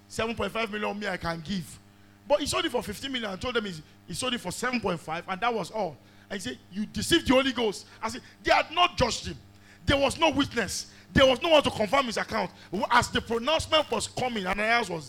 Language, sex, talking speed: English, male, 235 wpm